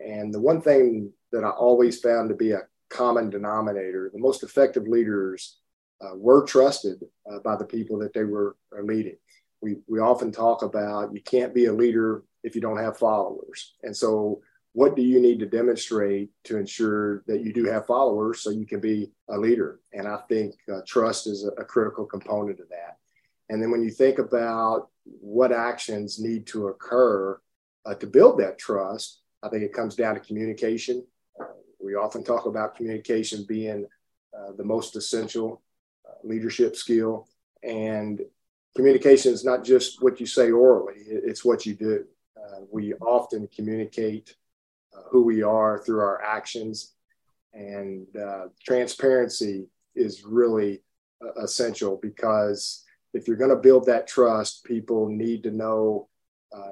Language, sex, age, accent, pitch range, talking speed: English, male, 40-59, American, 105-120 Hz, 165 wpm